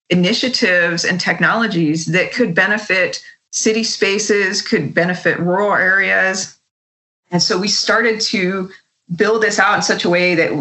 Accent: American